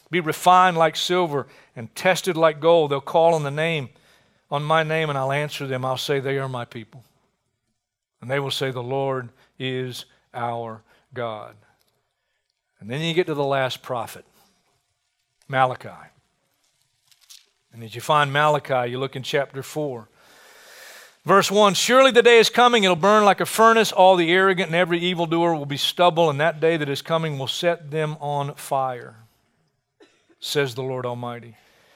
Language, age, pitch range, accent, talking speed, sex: English, 50-69, 135-180 Hz, American, 170 wpm, male